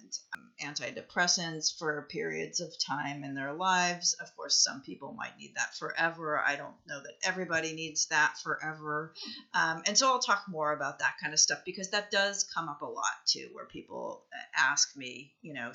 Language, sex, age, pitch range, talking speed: English, female, 30-49, 145-185 Hz, 185 wpm